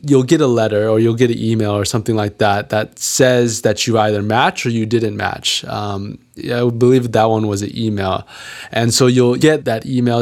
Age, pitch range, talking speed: 20-39, 110-130 Hz, 215 wpm